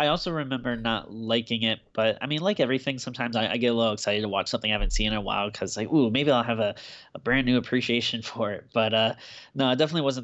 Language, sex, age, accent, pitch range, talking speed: English, male, 10-29, American, 110-130 Hz, 270 wpm